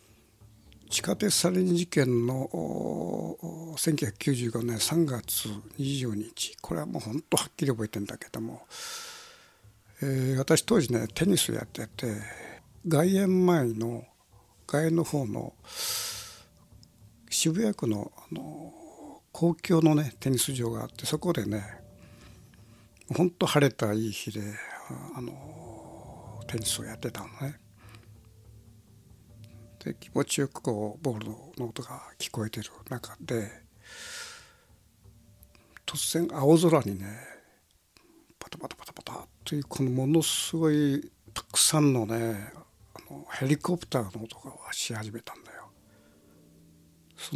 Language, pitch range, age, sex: Japanese, 110-155 Hz, 60-79, male